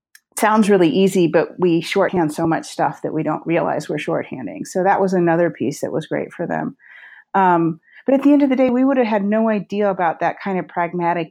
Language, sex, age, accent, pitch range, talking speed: English, female, 40-59, American, 160-195 Hz, 235 wpm